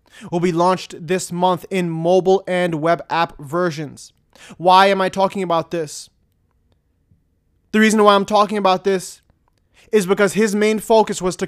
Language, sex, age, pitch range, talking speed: English, male, 20-39, 170-205 Hz, 160 wpm